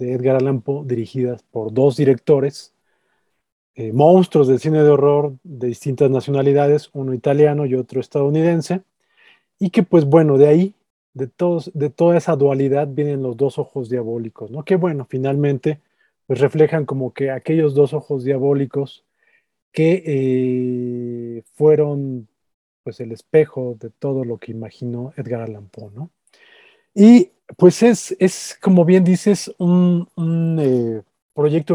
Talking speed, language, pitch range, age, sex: 145 wpm, Spanish, 130-165 Hz, 40-59, male